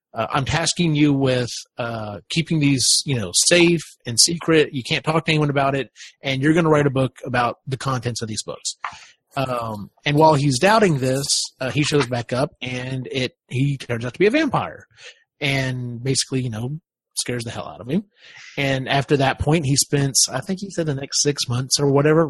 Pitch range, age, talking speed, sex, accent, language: 120-150 Hz, 30-49, 215 wpm, male, American, English